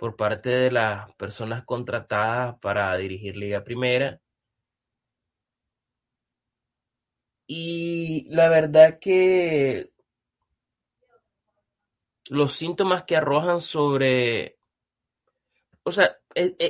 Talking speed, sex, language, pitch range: 80 wpm, male, Spanish, 120-150 Hz